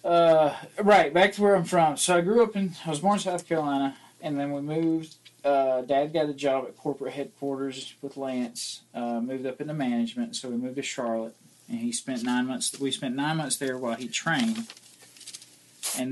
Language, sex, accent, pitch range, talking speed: English, male, American, 115-155 Hz, 210 wpm